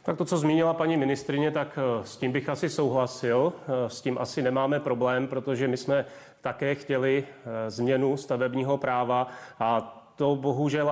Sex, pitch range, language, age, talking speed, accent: male, 130-150 Hz, Czech, 30-49, 155 wpm, native